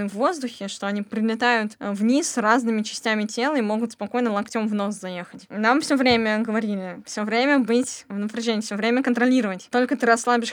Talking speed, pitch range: 175 wpm, 205-240 Hz